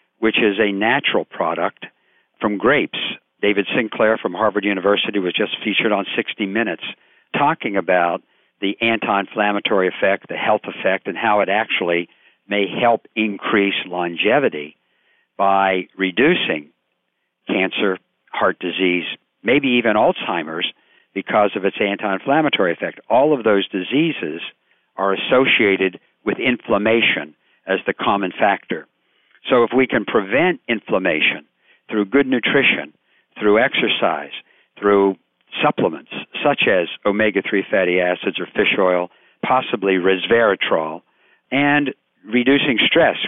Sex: male